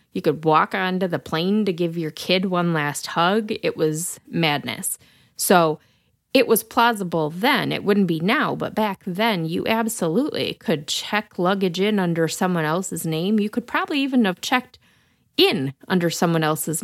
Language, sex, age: English, female, 30-49